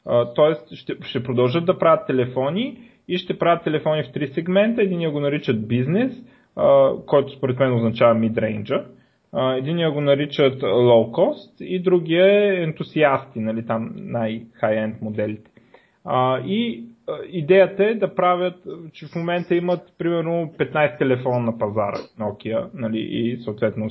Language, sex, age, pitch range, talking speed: Bulgarian, male, 30-49, 125-180 Hz, 140 wpm